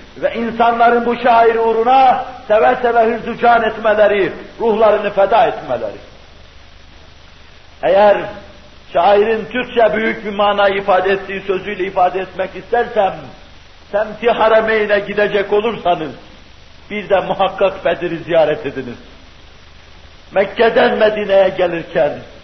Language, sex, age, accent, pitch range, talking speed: Turkish, male, 60-79, native, 175-230 Hz, 100 wpm